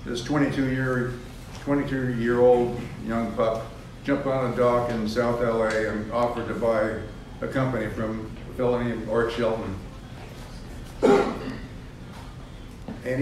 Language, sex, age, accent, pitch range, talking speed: English, male, 60-79, American, 115-130 Hz, 125 wpm